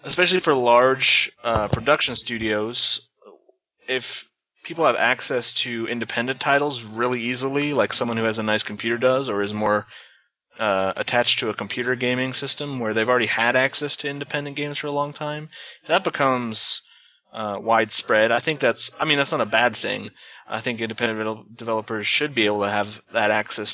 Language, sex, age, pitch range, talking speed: English, male, 20-39, 105-125 Hz, 170 wpm